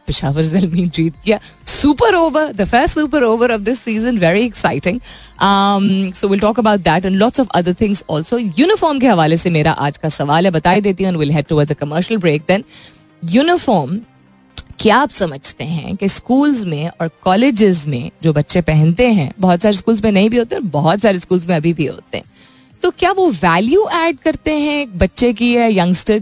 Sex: female